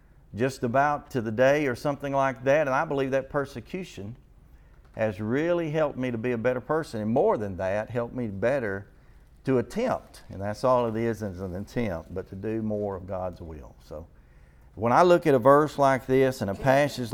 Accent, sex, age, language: American, male, 50-69, English